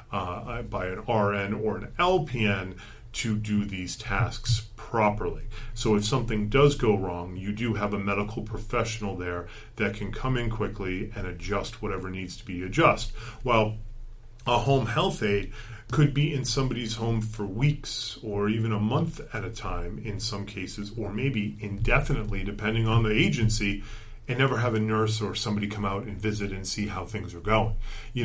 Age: 30-49